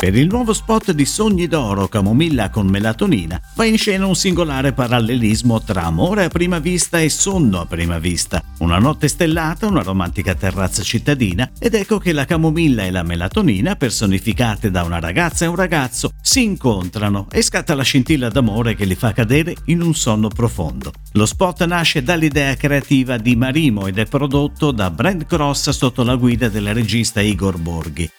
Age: 50-69